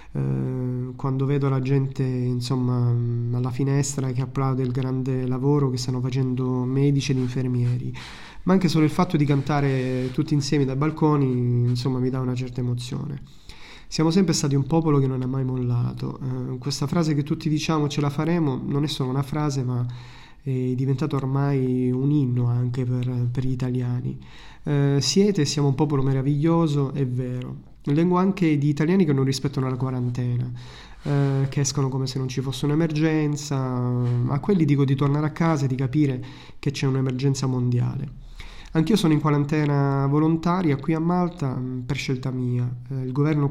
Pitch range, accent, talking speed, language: 125-145 Hz, native, 170 wpm, Italian